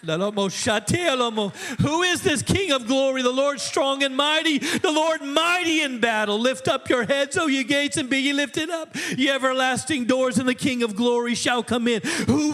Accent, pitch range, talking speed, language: American, 225-280 Hz, 190 wpm, English